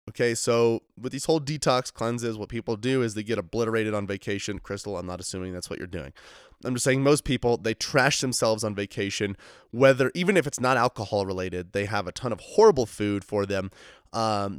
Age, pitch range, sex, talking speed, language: 20-39, 100-125 Hz, male, 210 wpm, English